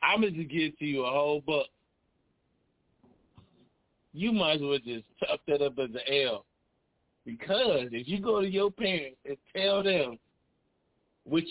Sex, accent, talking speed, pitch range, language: male, American, 155 wpm, 130-165 Hz, English